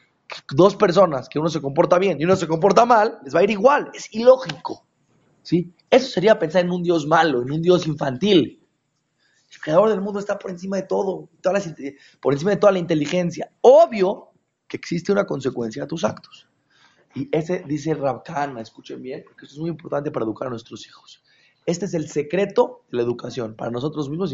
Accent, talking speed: Mexican, 200 wpm